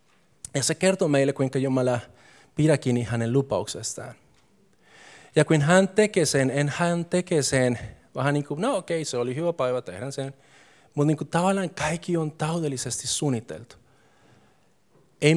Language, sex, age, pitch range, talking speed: Finnish, male, 30-49, 130-160 Hz, 150 wpm